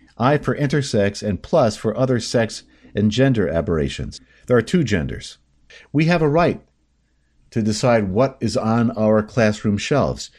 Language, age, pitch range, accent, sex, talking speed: English, 50-69, 95-125 Hz, American, male, 155 wpm